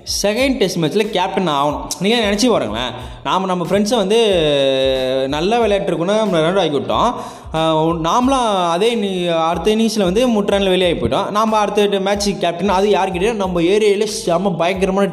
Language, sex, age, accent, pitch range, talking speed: Tamil, male, 20-39, native, 160-210 Hz, 145 wpm